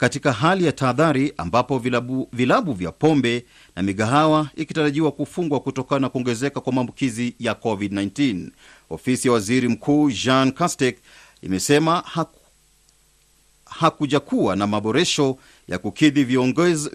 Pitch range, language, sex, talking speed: 120-150 Hz, Swahili, male, 120 wpm